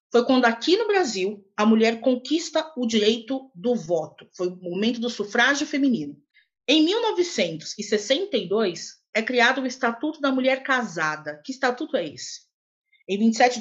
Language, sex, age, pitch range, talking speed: Portuguese, female, 40-59, 220-275 Hz, 145 wpm